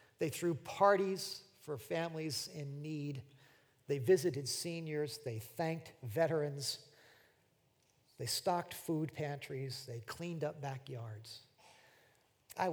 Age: 50-69